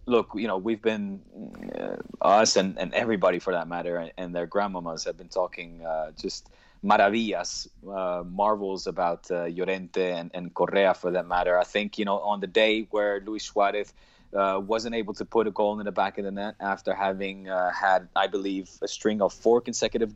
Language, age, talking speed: English, 20-39, 200 wpm